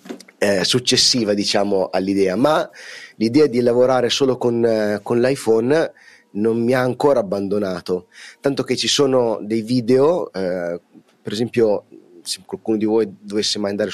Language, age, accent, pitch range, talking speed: Italian, 30-49, native, 100-125 Hz, 145 wpm